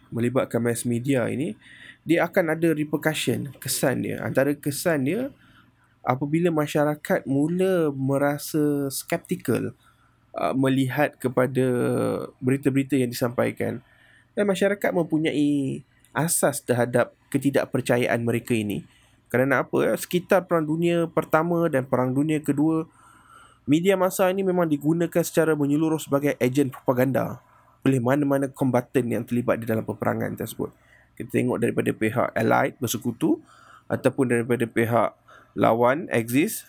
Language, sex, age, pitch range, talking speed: Malay, male, 20-39, 125-160 Hz, 120 wpm